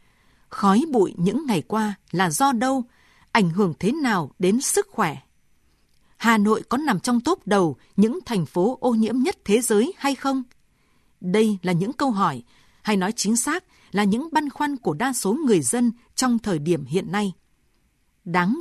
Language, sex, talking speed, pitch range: Vietnamese, female, 180 wpm, 190-255 Hz